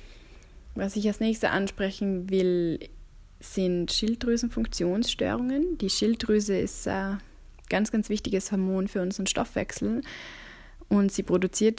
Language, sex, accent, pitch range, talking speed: German, female, German, 180-210 Hz, 110 wpm